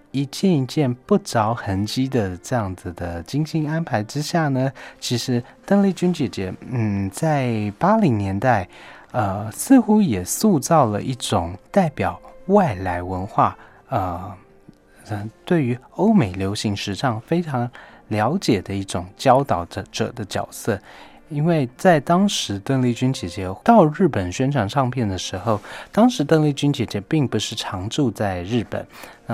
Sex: male